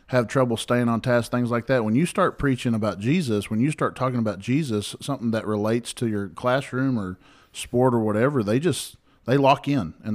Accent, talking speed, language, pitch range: American, 215 wpm, English, 105-125 Hz